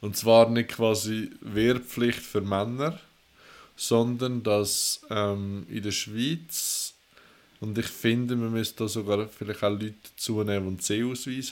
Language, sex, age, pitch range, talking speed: German, male, 20-39, 105-120 Hz, 140 wpm